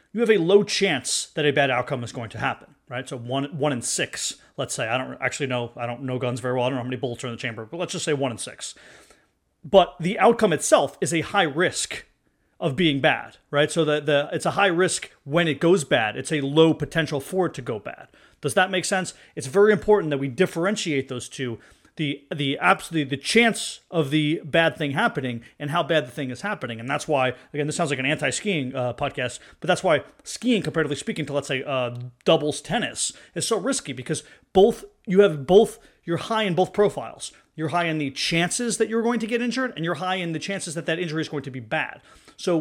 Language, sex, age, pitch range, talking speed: English, male, 30-49, 145-195 Hz, 240 wpm